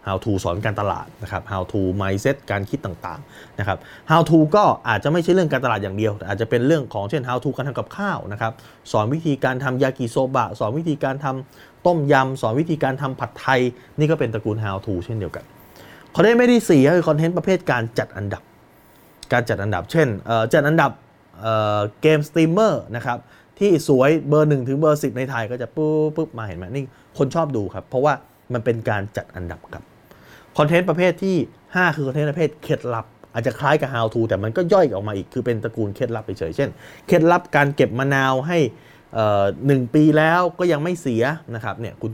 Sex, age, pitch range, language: male, 20-39, 110-155 Hz, Thai